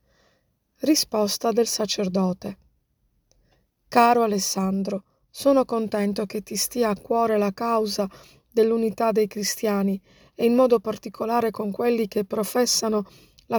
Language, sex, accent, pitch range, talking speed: Italian, female, native, 205-240 Hz, 115 wpm